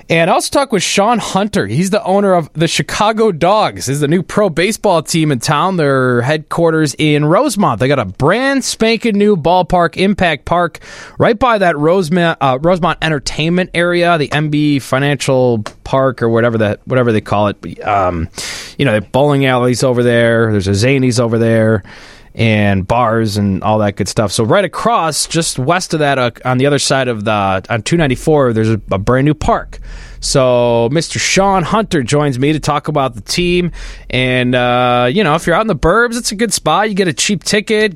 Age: 20-39